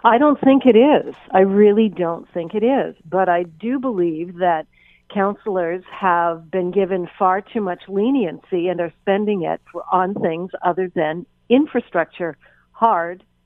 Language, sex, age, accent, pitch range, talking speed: English, female, 50-69, American, 175-225 Hz, 145 wpm